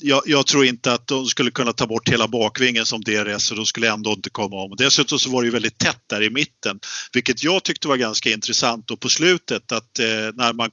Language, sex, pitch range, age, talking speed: Swedish, male, 110-135 Hz, 50-69, 245 wpm